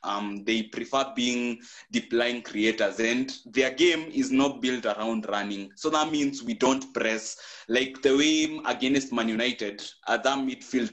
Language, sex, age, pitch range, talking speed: English, male, 20-39, 110-150 Hz, 160 wpm